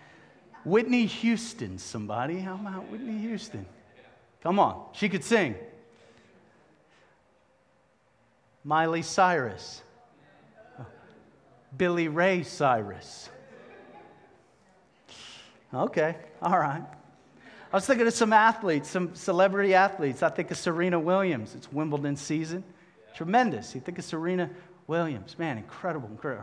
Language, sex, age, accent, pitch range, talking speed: English, male, 40-59, American, 165-230 Hz, 105 wpm